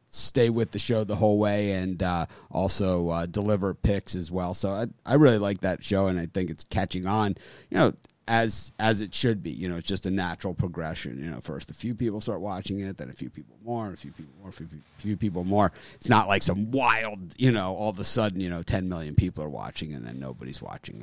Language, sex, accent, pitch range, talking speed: English, male, American, 90-115 Hz, 250 wpm